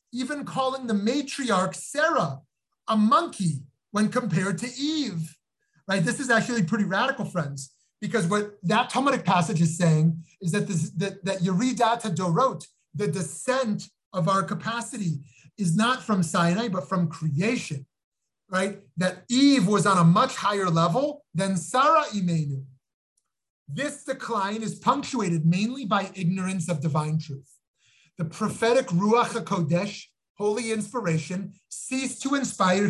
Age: 30-49